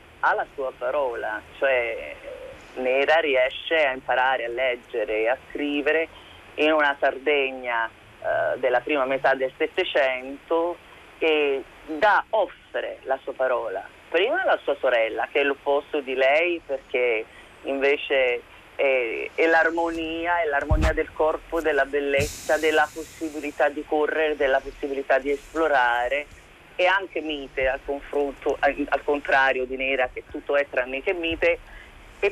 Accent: native